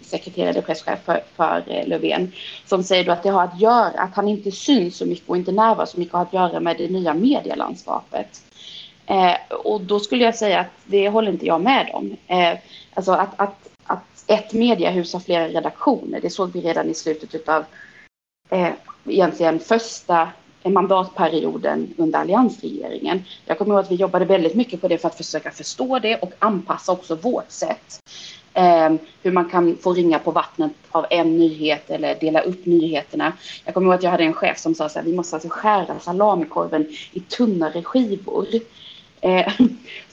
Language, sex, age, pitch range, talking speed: Swedish, female, 30-49, 165-210 Hz, 180 wpm